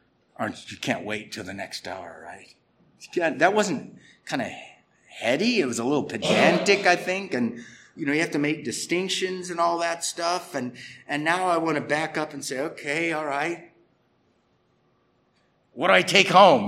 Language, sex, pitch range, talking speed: English, male, 130-170 Hz, 185 wpm